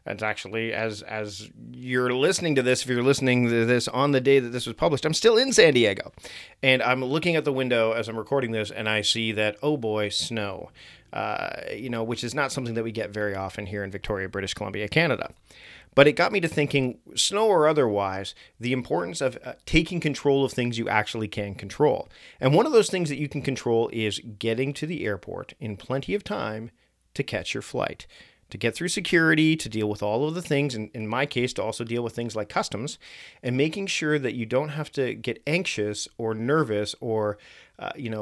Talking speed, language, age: 220 wpm, English, 40-59